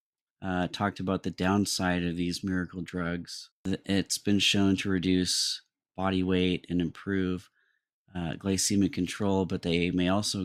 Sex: male